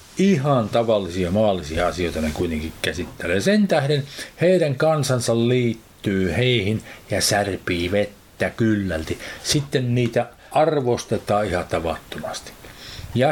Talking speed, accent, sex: 105 wpm, native, male